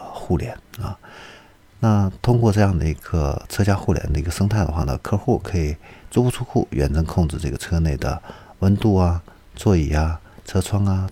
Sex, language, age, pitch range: male, Chinese, 50-69, 75-100 Hz